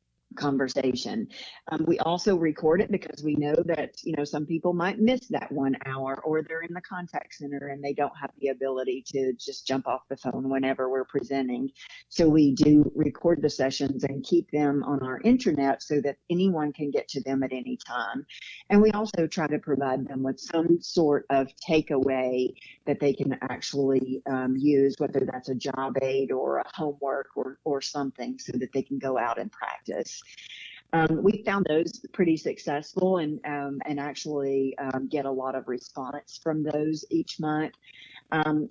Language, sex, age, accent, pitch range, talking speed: English, female, 50-69, American, 135-165 Hz, 185 wpm